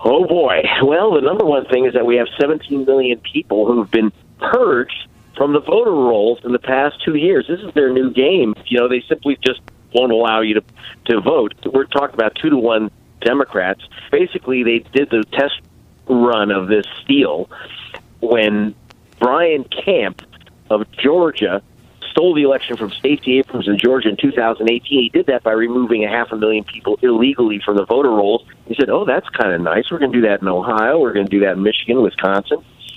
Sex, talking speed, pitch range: male, 200 wpm, 110-140 Hz